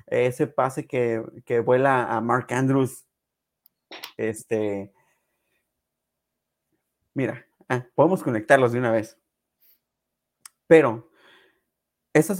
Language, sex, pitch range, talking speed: Spanish, male, 125-165 Hz, 85 wpm